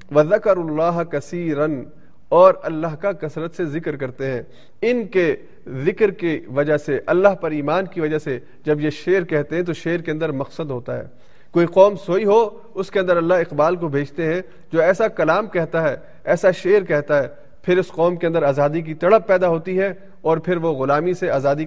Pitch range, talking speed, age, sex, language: 150-185 Hz, 200 wpm, 40-59, male, Urdu